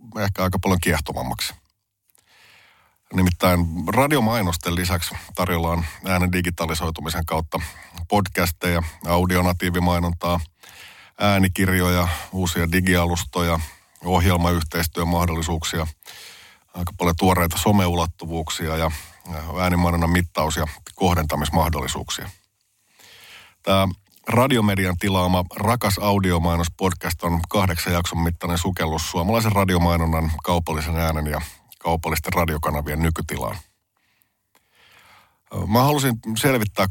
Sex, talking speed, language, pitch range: male, 75 wpm, Finnish, 85-95 Hz